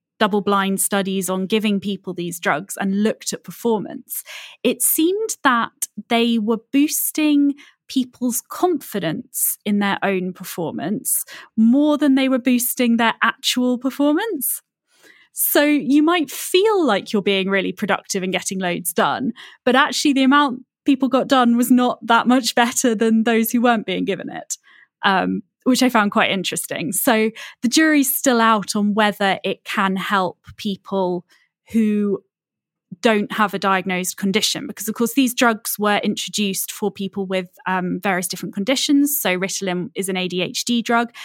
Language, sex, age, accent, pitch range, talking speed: English, female, 10-29, British, 195-260 Hz, 155 wpm